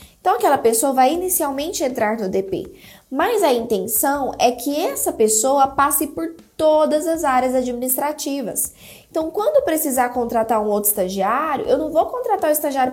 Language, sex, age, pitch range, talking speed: Portuguese, female, 10-29, 225-300 Hz, 160 wpm